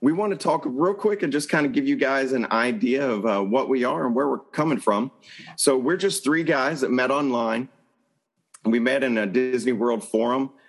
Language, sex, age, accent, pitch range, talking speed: English, male, 40-59, American, 110-135 Hz, 225 wpm